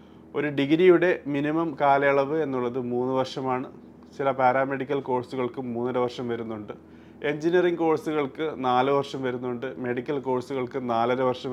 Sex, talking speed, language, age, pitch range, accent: male, 115 wpm, Malayalam, 30-49, 120-145 Hz, native